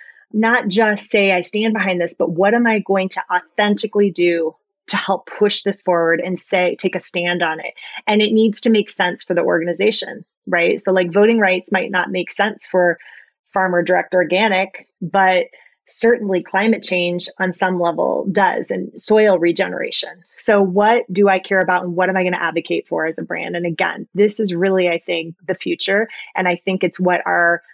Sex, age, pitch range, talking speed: female, 30-49, 185-225 Hz, 200 wpm